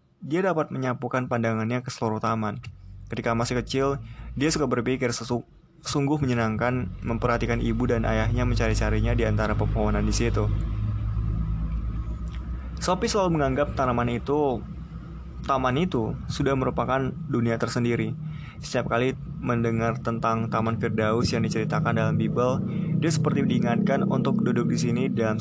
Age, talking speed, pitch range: 20-39, 130 wpm, 110-140 Hz